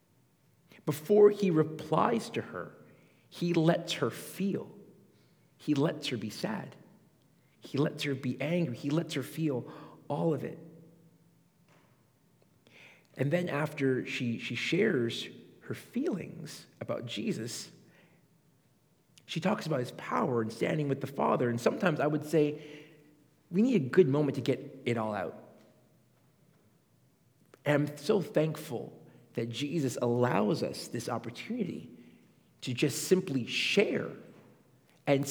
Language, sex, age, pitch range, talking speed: English, male, 40-59, 135-165 Hz, 130 wpm